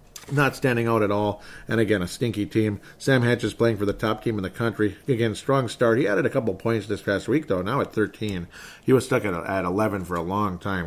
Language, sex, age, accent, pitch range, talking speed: English, male, 40-59, American, 100-120 Hz, 250 wpm